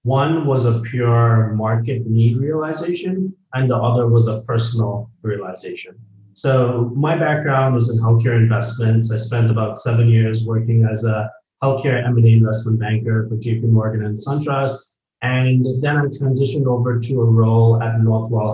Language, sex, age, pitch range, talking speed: English, male, 30-49, 115-135 Hz, 155 wpm